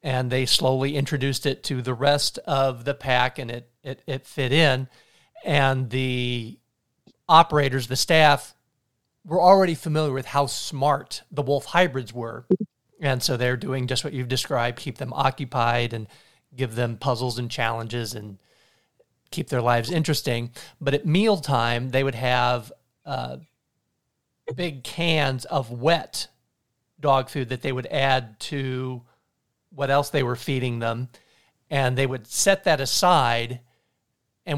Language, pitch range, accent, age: English, 125-155 Hz, American, 40-59